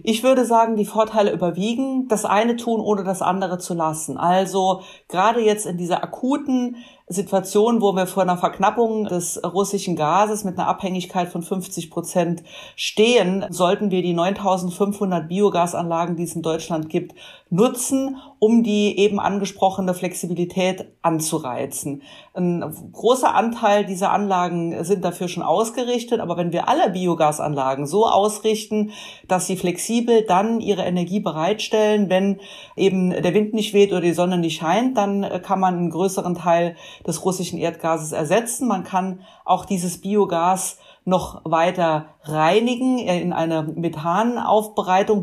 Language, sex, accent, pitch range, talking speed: German, female, German, 175-210 Hz, 145 wpm